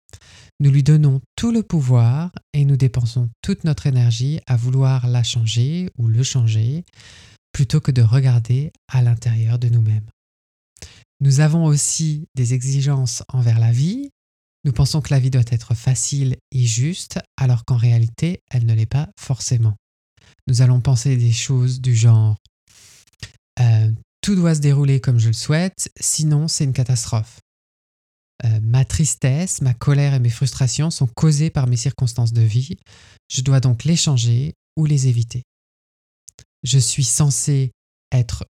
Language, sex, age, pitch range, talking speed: French, male, 20-39, 115-145 Hz, 155 wpm